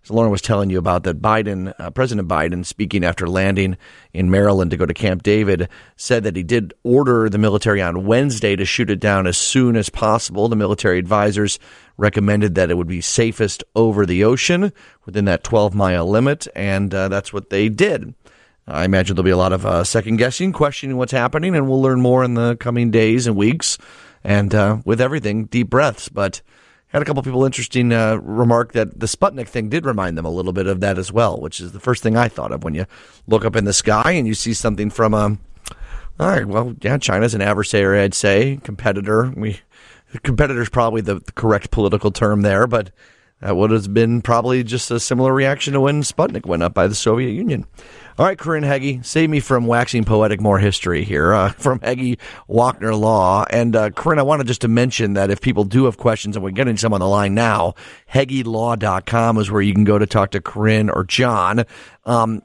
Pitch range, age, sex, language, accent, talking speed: 100-125 Hz, 30-49, male, English, American, 210 wpm